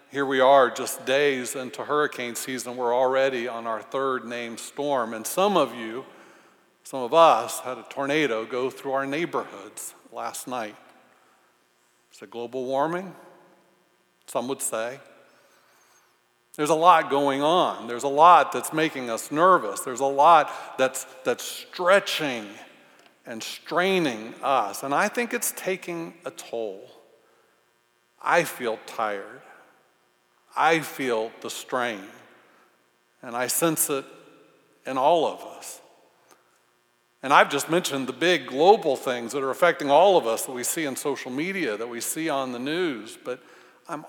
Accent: American